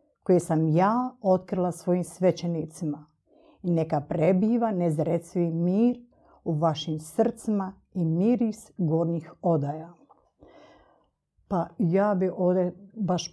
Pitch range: 160-200 Hz